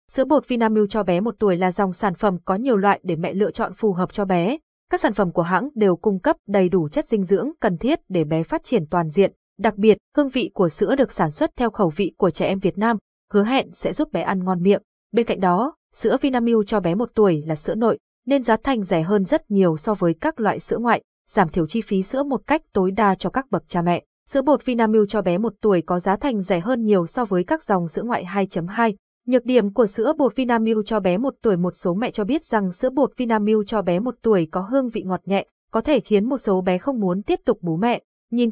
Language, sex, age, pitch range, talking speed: Vietnamese, female, 20-39, 185-240 Hz, 260 wpm